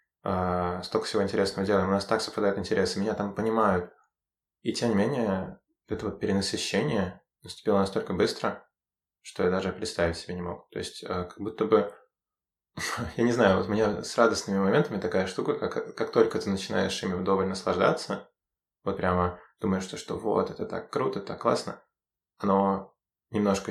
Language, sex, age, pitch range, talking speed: Russian, male, 20-39, 90-100 Hz, 170 wpm